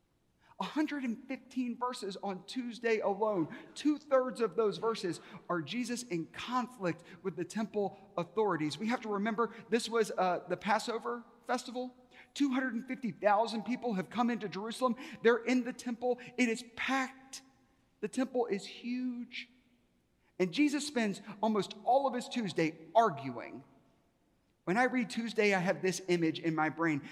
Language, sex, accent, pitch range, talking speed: English, male, American, 175-240 Hz, 145 wpm